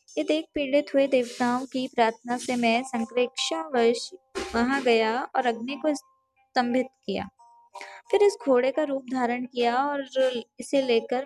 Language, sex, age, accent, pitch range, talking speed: English, female, 20-39, Indian, 245-280 Hz, 150 wpm